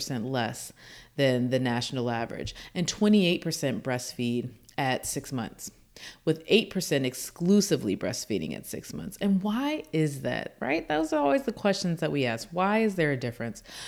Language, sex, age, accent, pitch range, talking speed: English, female, 30-49, American, 140-200 Hz, 155 wpm